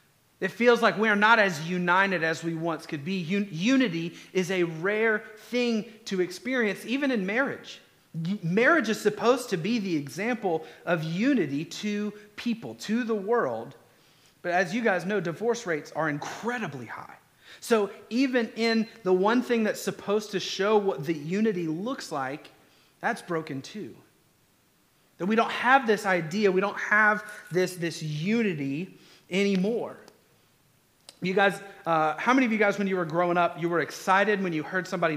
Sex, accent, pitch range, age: male, American, 175-235 Hz, 30-49